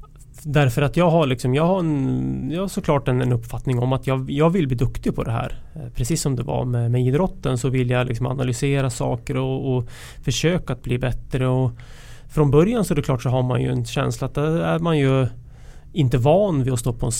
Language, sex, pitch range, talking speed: English, male, 125-150 Hz, 235 wpm